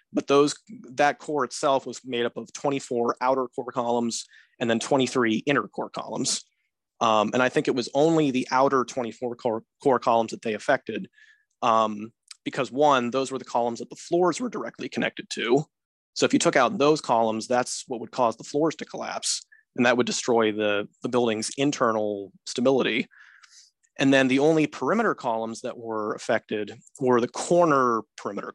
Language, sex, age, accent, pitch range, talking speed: English, male, 30-49, American, 115-140 Hz, 180 wpm